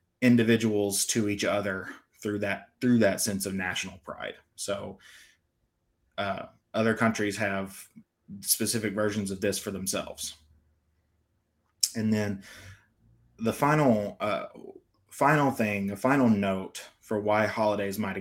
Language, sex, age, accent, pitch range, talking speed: English, male, 20-39, American, 100-115 Hz, 120 wpm